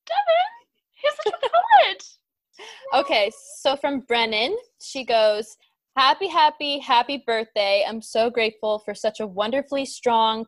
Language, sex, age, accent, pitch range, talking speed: English, female, 20-39, American, 200-250 Hz, 105 wpm